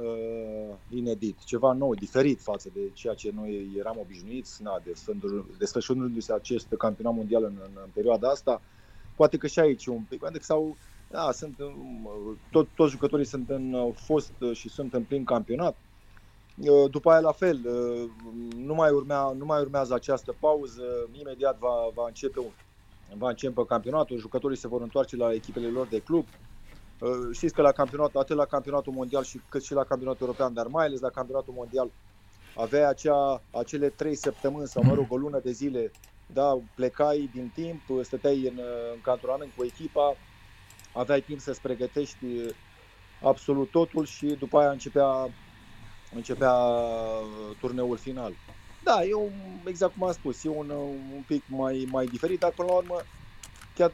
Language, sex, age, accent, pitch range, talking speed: Romanian, male, 30-49, native, 115-145 Hz, 155 wpm